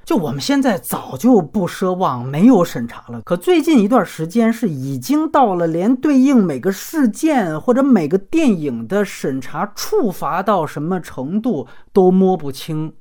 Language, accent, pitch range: Chinese, native, 150-245 Hz